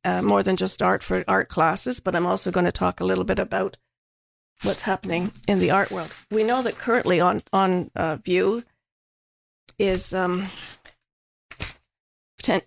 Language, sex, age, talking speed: English, female, 50-69, 165 wpm